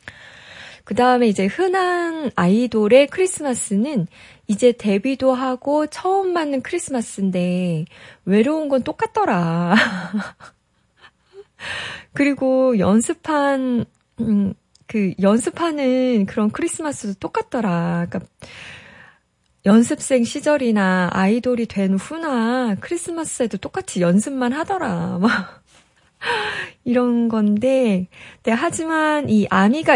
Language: Korean